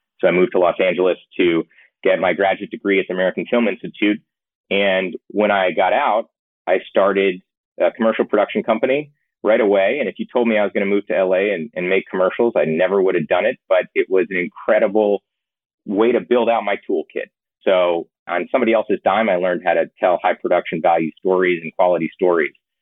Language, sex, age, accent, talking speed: English, male, 30-49, American, 210 wpm